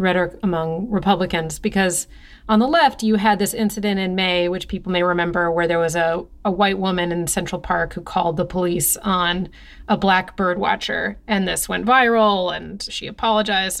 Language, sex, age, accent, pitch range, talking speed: English, female, 30-49, American, 180-215 Hz, 185 wpm